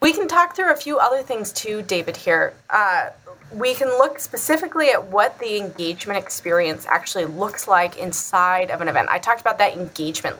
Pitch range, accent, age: 185-255 Hz, American, 20-39